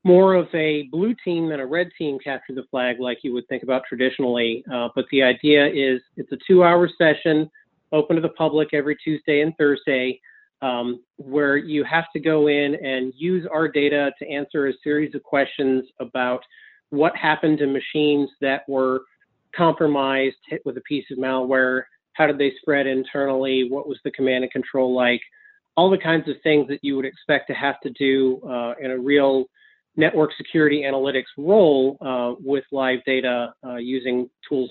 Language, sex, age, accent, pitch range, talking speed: English, male, 30-49, American, 130-155 Hz, 185 wpm